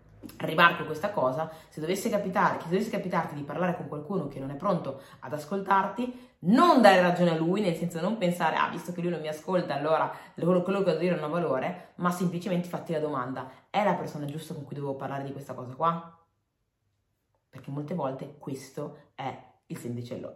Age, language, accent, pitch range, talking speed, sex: 30-49, Italian, native, 155-195 Hz, 195 wpm, female